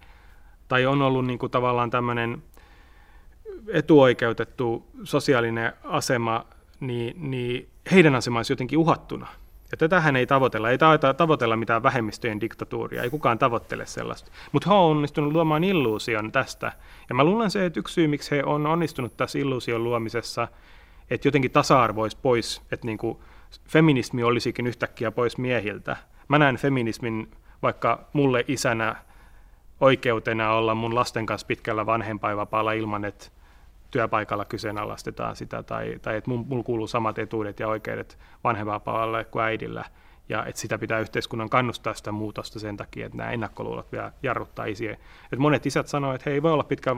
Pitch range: 110-140 Hz